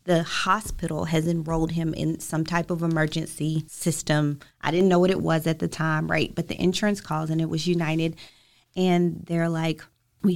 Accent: American